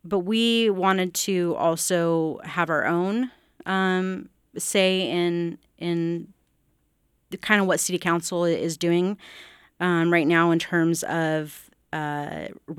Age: 30-49